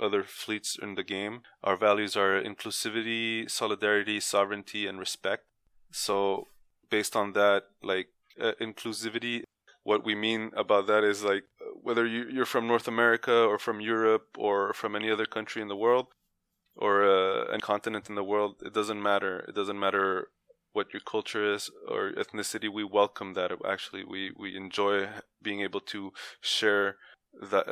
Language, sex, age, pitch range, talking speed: English, male, 20-39, 100-110 Hz, 160 wpm